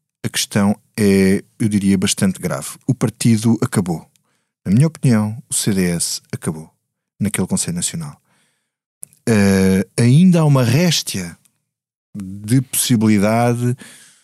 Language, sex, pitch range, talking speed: Portuguese, male, 100-130 Hz, 105 wpm